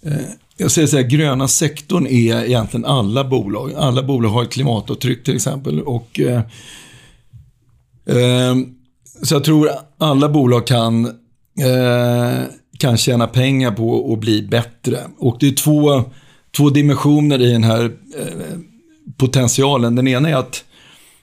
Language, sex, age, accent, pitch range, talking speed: Swedish, male, 40-59, native, 115-145 Hz, 140 wpm